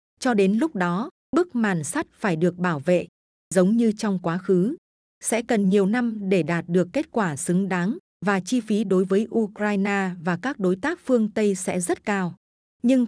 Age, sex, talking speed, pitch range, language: 20-39, female, 195 wpm, 185-230 Hz, Vietnamese